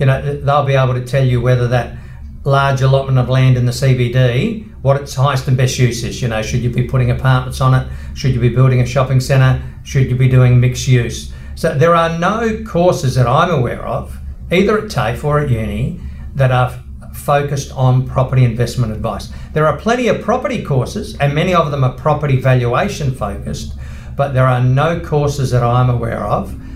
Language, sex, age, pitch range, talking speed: English, male, 50-69, 125-155 Hz, 200 wpm